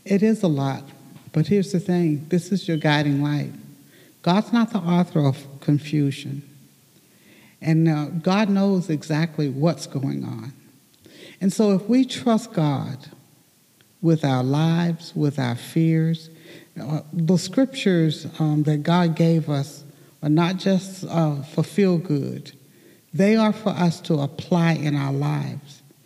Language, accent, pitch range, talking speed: English, American, 150-200 Hz, 145 wpm